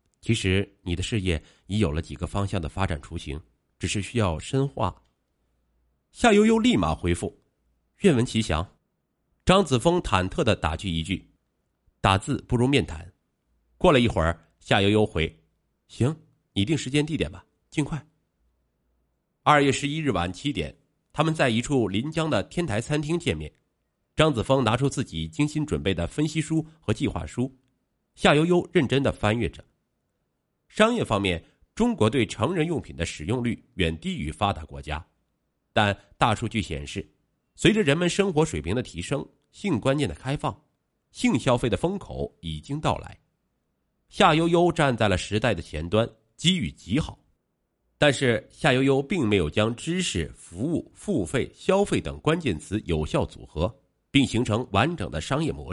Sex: male